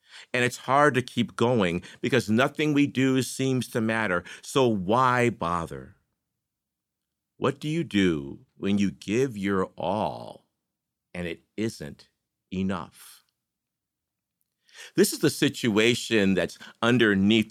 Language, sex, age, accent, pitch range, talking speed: English, male, 50-69, American, 95-130 Hz, 120 wpm